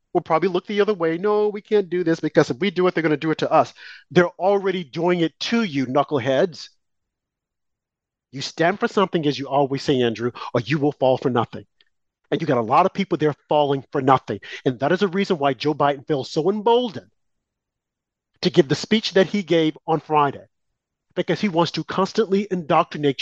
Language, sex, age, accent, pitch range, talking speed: English, male, 40-59, American, 145-195 Hz, 210 wpm